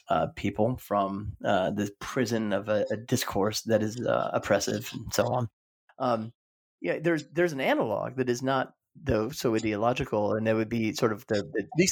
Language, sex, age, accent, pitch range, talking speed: English, male, 30-49, American, 105-130 Hz, 185 wpm